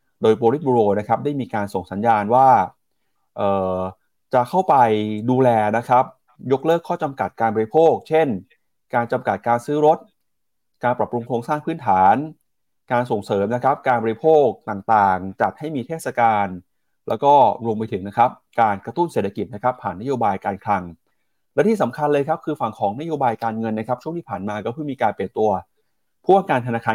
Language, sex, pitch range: Thai, male, 100-130 Hz